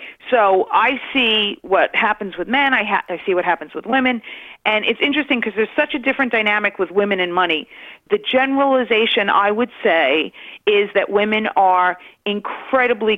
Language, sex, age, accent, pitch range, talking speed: English, female, 40-59, American, 175-235 Hz, 175 wpm